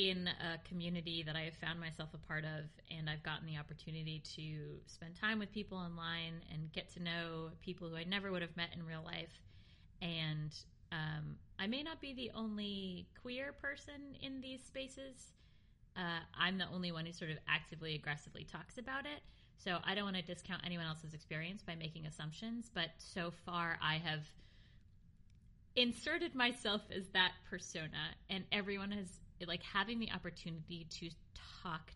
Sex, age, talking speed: female, 20-39, 175 wpm